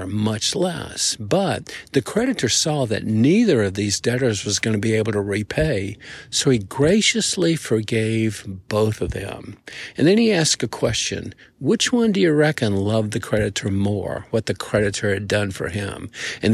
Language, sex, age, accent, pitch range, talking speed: English, male, 50-69, American, 105-140 Hz, 175 wpm